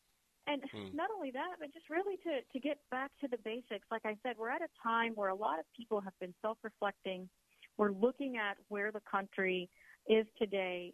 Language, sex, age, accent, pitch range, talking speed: English, female, 40-59, American, 195-250 Hz, 205 wpm